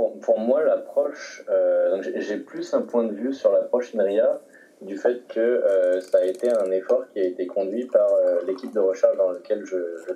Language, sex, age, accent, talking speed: French, male, 20-39, French, 215 wpm